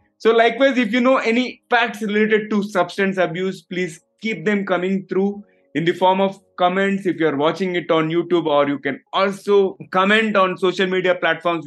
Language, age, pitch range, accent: English, 20-39, 165-210 Hz, Indian